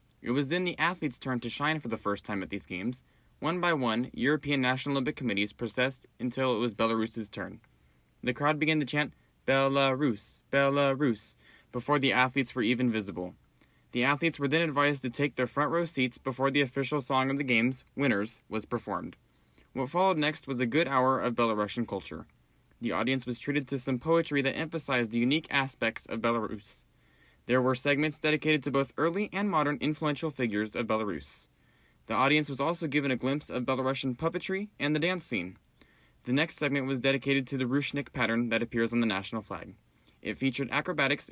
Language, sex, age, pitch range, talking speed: English, male, 20-39, 120-150 Hz, 190 wpm